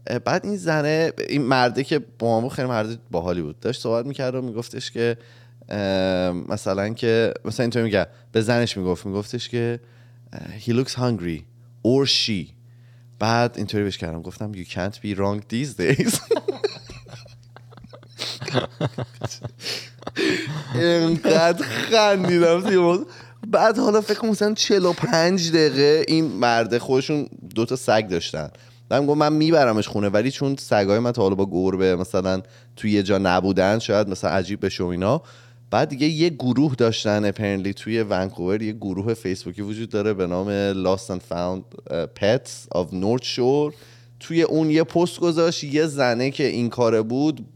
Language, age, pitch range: Persian, 30-49, 105-145 Hz